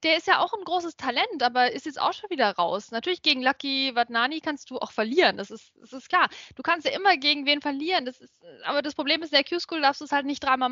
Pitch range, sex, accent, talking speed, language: 255-315 Hz, female, German, 275 wpm, German